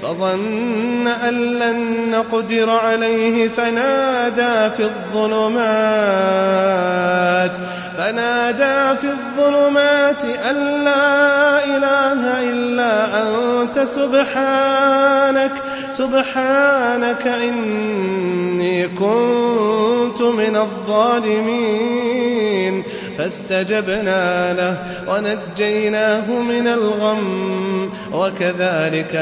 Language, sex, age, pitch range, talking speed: Arabic, male, 30-49, 195-255 Hz, 60 wpm